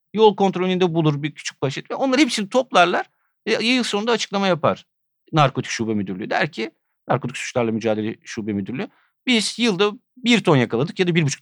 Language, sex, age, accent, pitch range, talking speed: Turkish, male, 50-69, native, 130-180 Hz, 180 wpm